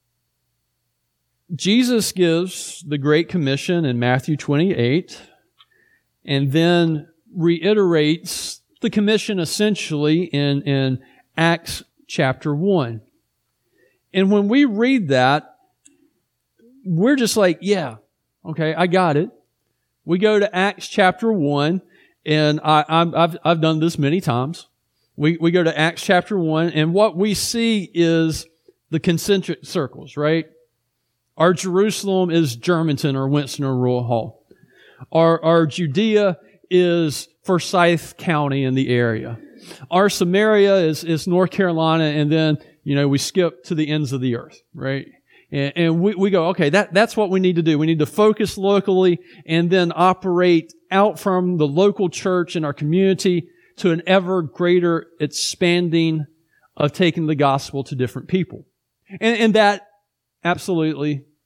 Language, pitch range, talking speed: English, 150-190 Hz, 140 wpm